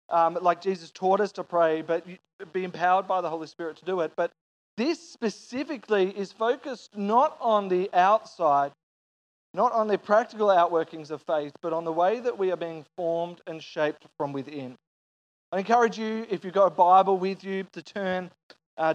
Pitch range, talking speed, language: 170-210 Hz, 185 wpm, English